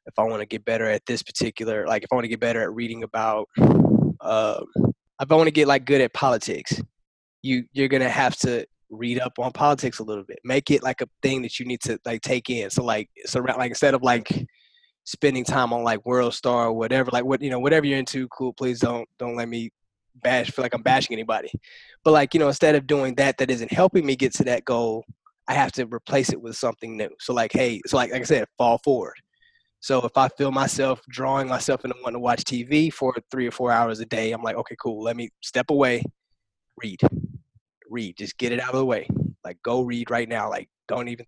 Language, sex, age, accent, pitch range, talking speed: English, male, 20-39, American, 115-140 Hz, 245 wpm